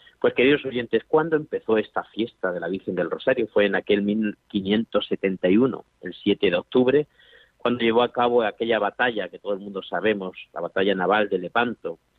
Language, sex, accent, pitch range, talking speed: Spanish, male, Spanish, 105-130 Hz, 175 wpm